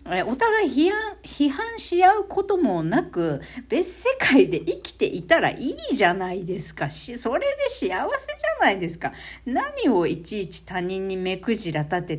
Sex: female